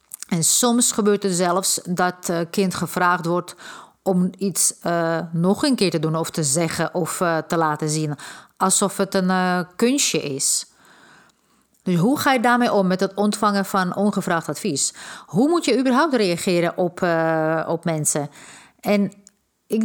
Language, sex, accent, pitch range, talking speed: Dutch, female, Dutch, 170-205 Hz, 165 wpm